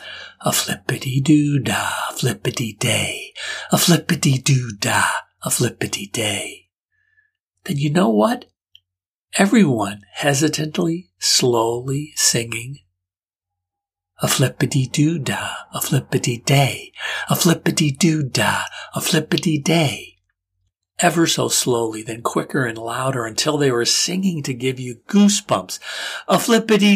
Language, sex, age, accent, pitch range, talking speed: English, male, 60-79, American, 115-170 Hz, 105 wpm